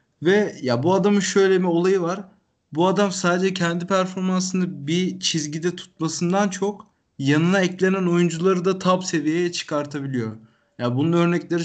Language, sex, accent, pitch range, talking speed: Turkish, male, native, 140-180 Hz, 140 wpm